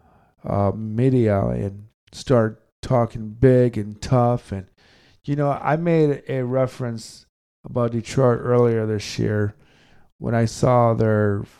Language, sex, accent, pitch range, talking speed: English, male, American, 105-130 Hz, 125 wpm